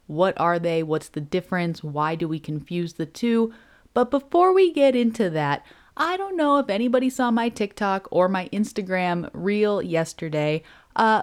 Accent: American